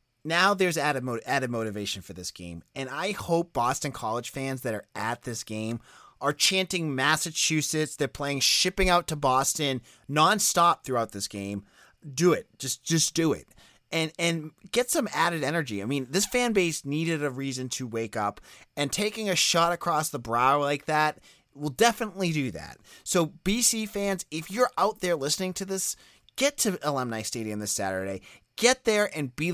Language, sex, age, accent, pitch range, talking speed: English, male, 30-49, American, 130-190 Hz, 180 wpm